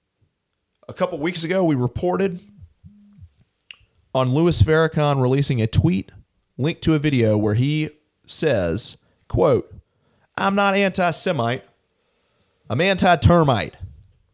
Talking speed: 105 wpm